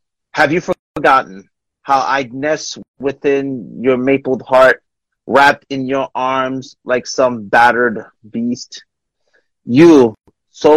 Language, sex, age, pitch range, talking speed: English, male, 30-49, 125-150 Hz, 110 wpm